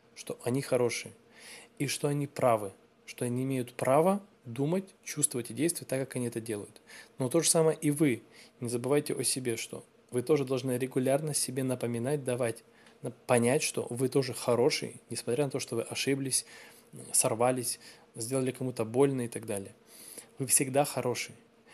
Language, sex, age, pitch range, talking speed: Russian, male, 20-39, 120-150 Hz, 165 wpm